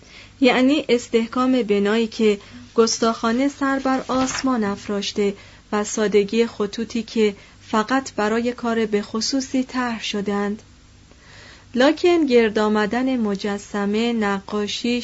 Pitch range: 205-245 Hz